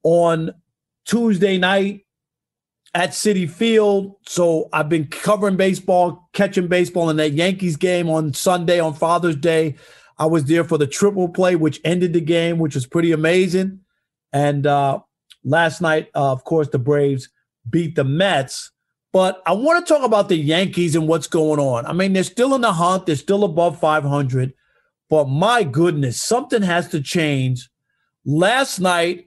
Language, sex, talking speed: English, male, 165 wpm